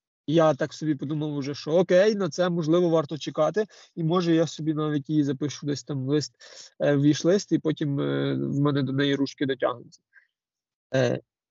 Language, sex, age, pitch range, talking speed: Ukrainian, male, 20-39, 140-165 Hz, 170 wpm